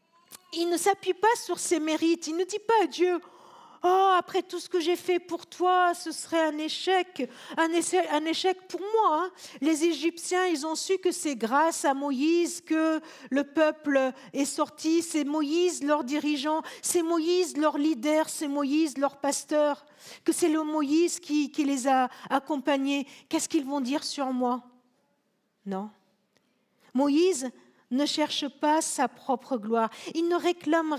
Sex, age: female, 50-69